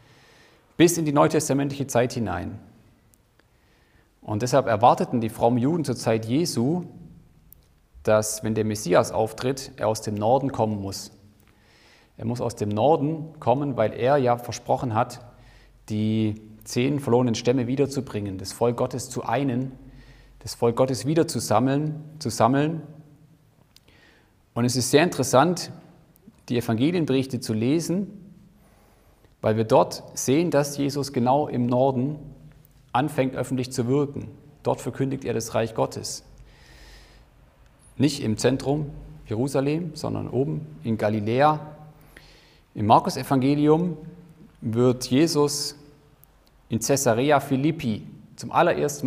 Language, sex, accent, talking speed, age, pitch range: German, male, German, 120 wpm, 40-59, 115-145 Hz